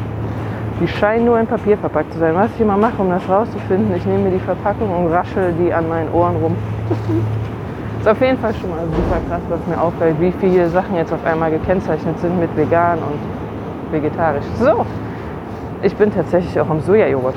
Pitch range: 105-175 Hz